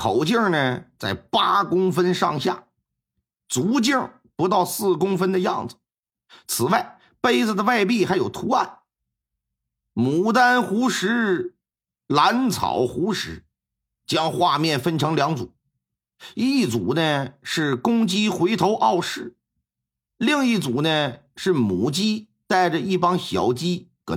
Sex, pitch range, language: male, 140-200 Hz, Chinese